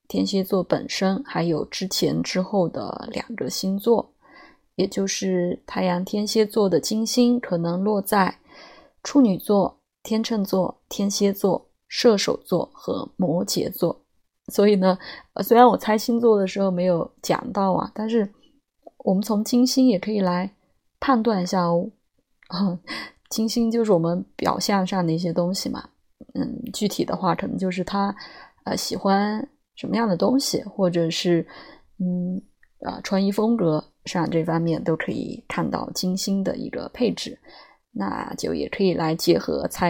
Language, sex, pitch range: Chinese, female, 180-230 Hz